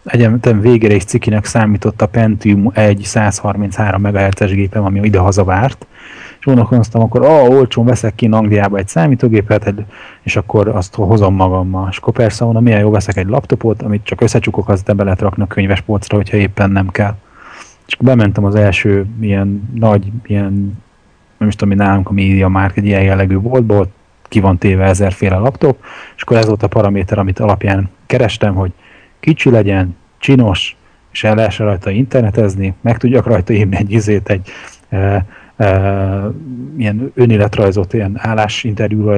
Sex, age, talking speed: male, 30-49, 160 wpm